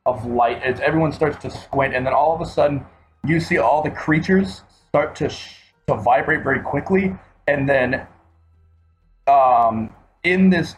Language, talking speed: English, 165 wpm